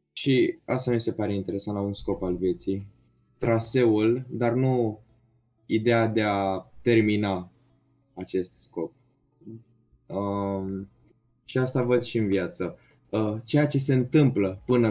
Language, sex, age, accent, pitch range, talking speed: Romanian, male, 20-39, native, 100-120 Hz, 135 wpm